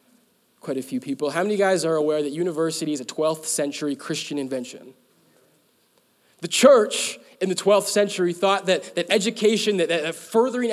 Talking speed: 170 wpm